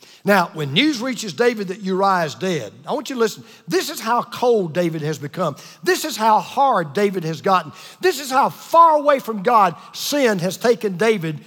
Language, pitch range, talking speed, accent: English, 175-250 Hz, 205 wpm, American